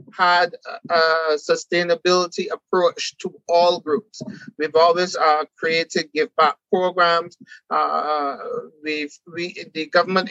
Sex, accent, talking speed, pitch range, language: male, American, 110 wpm, 165-195 Hz, English